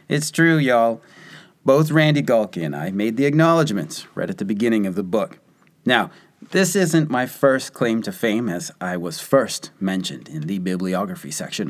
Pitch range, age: 95-155 Hz, 30-49